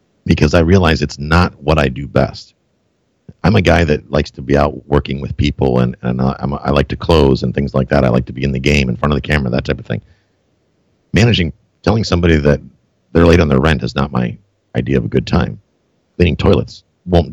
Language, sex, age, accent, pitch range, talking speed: English, male, 50-69, American, 70-90 Hz, 235 wpm